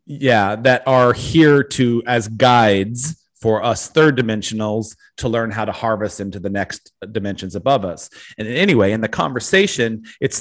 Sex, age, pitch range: male, 40-59, 105-125 Hz